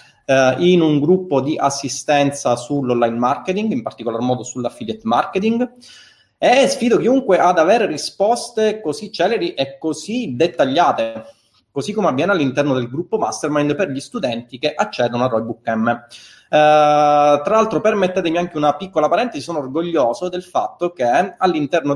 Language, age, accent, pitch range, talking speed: Italian, 30-49, native, 125-170 Hz, 150 wpm